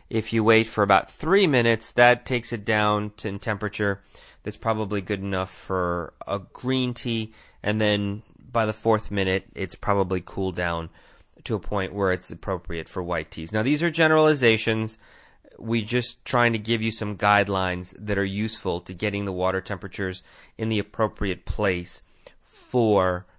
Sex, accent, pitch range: male, American, 95-115 Hz